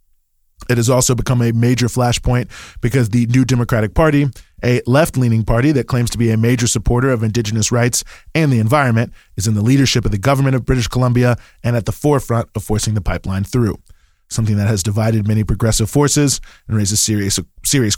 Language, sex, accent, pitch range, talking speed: English, male, American, 105-130 Hz, 195 wpm